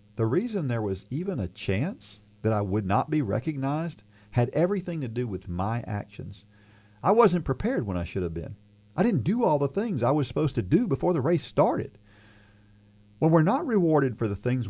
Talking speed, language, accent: 205 wpm, English, American